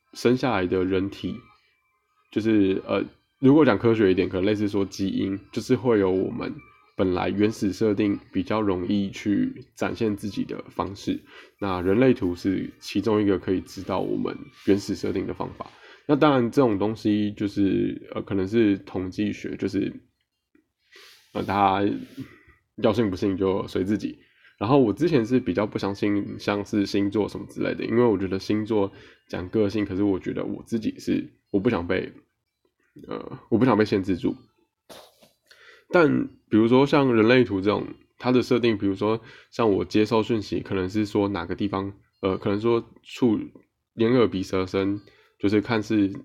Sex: male